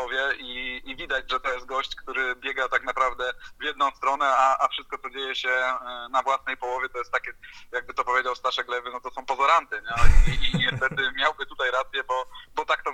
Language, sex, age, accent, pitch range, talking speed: Polish, male, 20-39, native, 130-205 Hz, 210 wpm